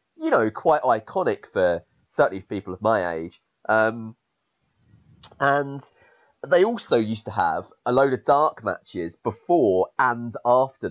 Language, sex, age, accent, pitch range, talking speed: English, male, 30-49, British, 100-130 Hz, 145 wpm